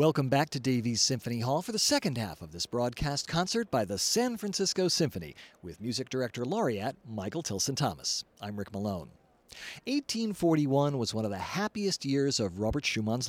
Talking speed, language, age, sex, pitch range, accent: 170 wpm, English, 50-69, male, 110-180 Hz, American